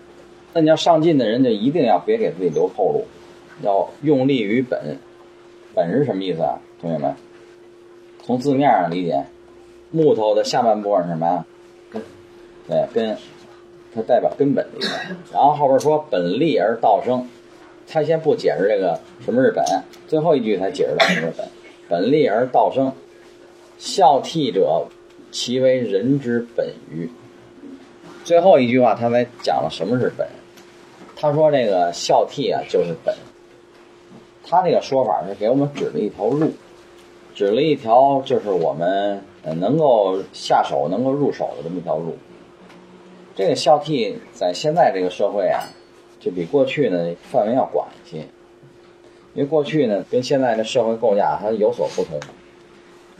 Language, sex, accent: Chinese, male, native